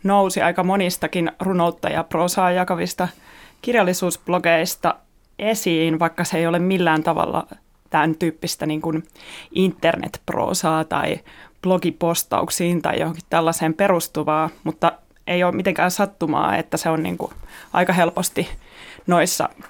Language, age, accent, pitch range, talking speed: Finnish, 30-49, native, 165-180 Hz, 115 wpm